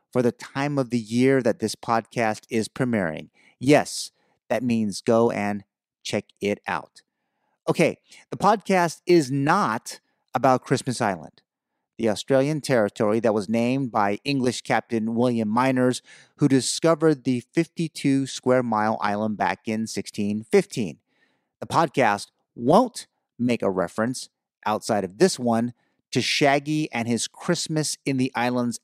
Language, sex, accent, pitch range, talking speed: English, male, American, 115-140 Hz, 135 wpm